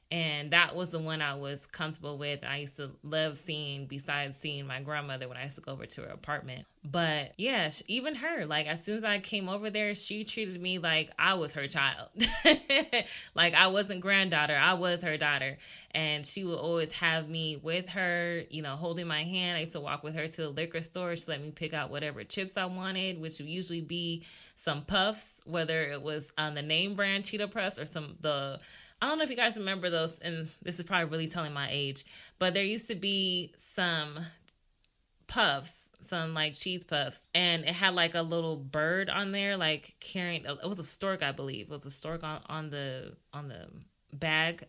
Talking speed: 215 wpm